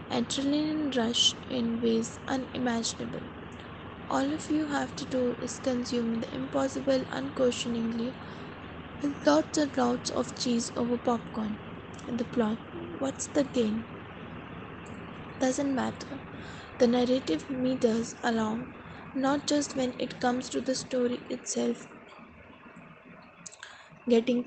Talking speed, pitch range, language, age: 115 wpm, 230-260 Hz, English, 20-39